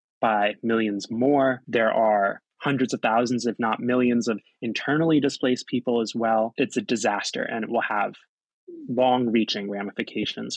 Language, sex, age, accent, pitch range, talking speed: English, male, 20-39, American, 110-125 Hz, 155 wpm